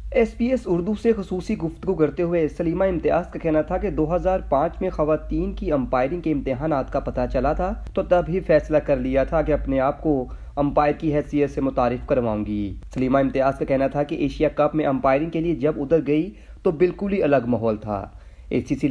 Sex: male